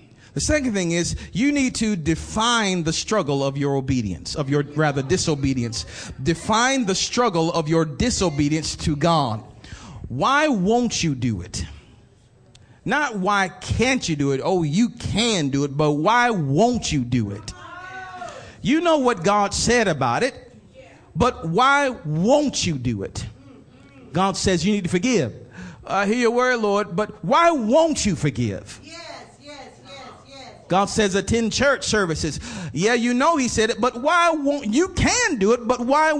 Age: 40-59